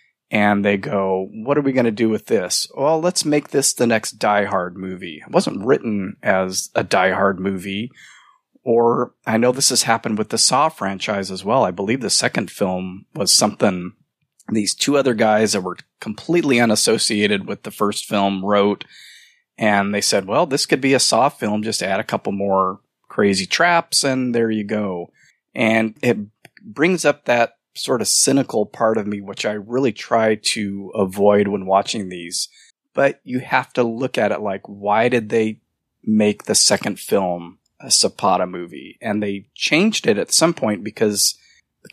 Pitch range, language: 95-120 Hz, English